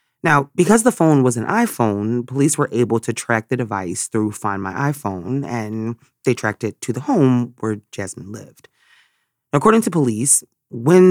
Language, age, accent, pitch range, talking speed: English, 30-49, American, 105-145 Hz, 175 wpm